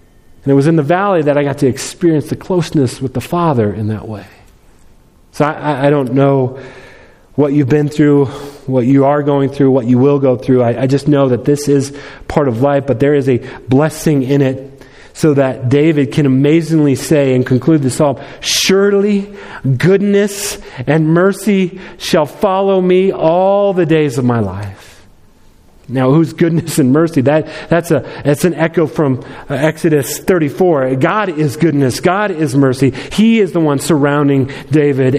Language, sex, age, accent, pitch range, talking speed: English, male, 40-59, American, 135-190 Hz, 175 wpm